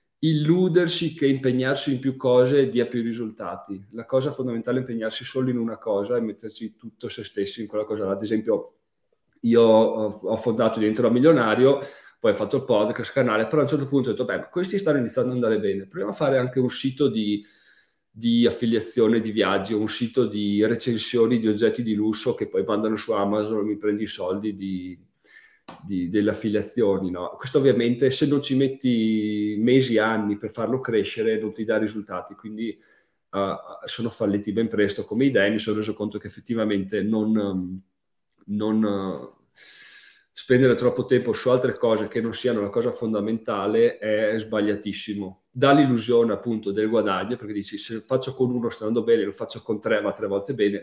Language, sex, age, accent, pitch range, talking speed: Italian, male, 40-59, native, 105-125 Hz, 185 wpm